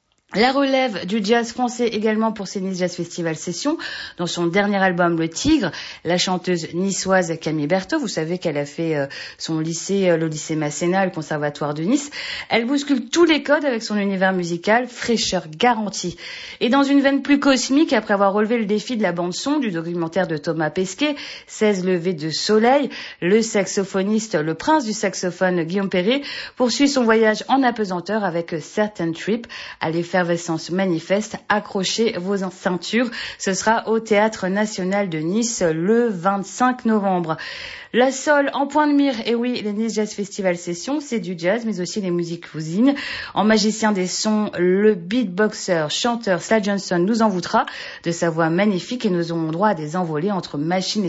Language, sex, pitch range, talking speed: French, female, 180-225 Hz, 175 wpm